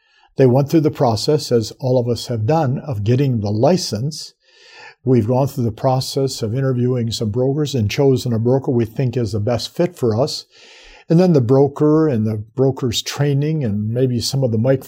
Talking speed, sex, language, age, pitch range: 200 wpm, male, English, 50-69, 125-155 Hz